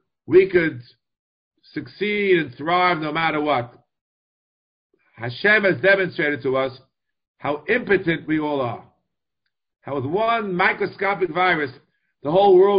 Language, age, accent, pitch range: English, 50-69, American, 135-185 Hz